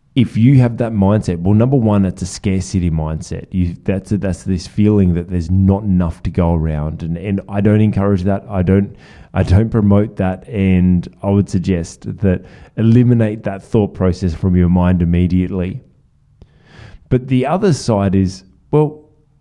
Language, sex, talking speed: English, male, 175 wpm